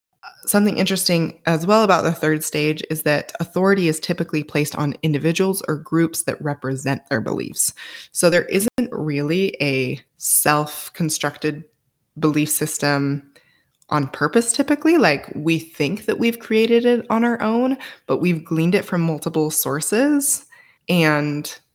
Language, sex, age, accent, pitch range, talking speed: English, female, 20-39, American, 145-180 Hz, 140 wpm